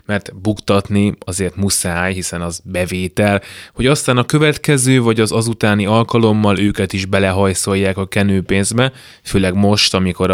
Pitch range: 95-115 Hz